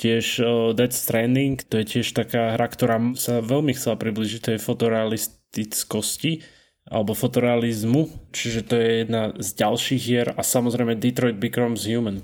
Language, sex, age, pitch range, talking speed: Slovak, male, 20-39, 110-130 Hz, 150 wpm